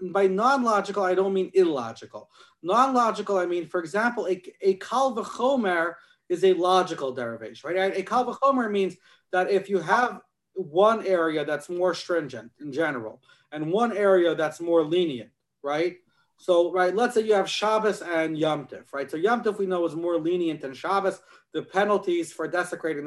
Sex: male